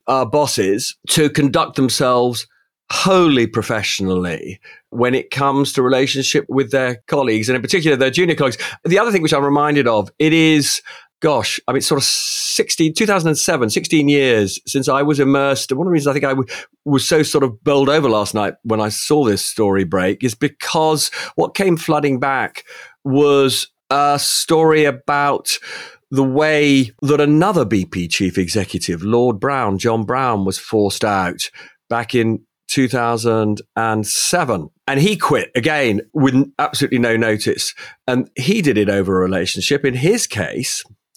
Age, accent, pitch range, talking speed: 40-59, British, 105-145 Hz, 160 wpm